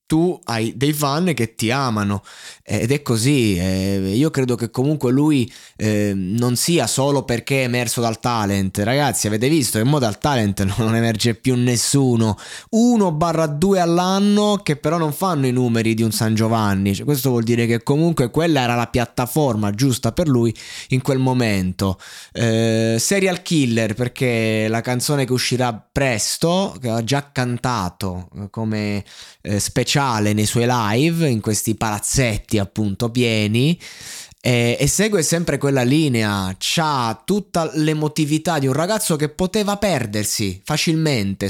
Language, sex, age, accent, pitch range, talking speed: Italian, male, 20-39, native, 110-150 Hz, 145 wpm